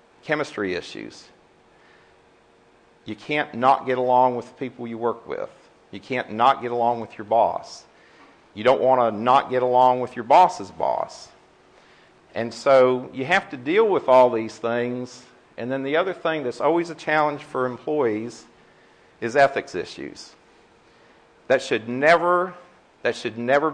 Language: English